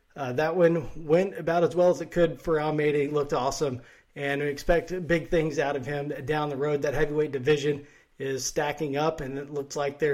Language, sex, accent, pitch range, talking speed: English, male, American, 135-155 Hz, 220 wpm